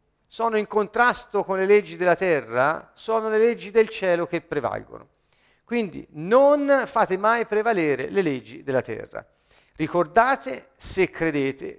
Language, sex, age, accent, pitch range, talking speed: Italian, male, 50-69, native, 150-230 Hz, 135 wpm